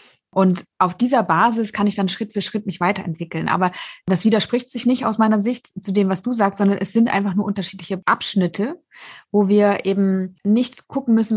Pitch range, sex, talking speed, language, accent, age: 190-230 Hz, female, 200 wpm, German, German, 20-39